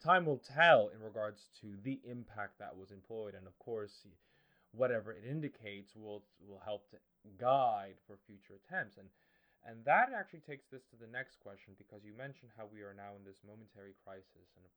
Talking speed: 195 wpm